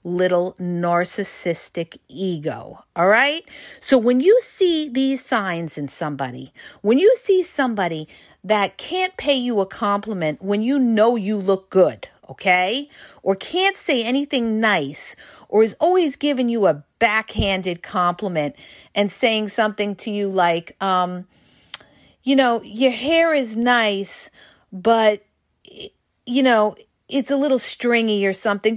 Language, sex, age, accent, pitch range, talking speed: English, female, 40-59, American, 190-265 Hz, 135 wpm